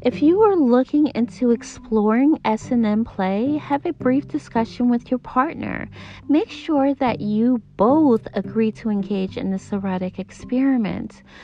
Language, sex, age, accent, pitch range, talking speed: English, female, 40-59, American, 220-290 Hz, 140 wpm